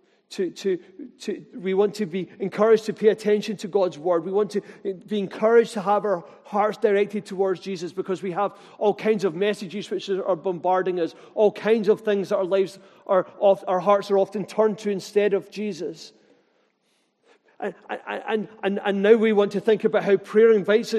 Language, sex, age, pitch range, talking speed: English, male, 40-59, 195-220 Hz, 195 wpm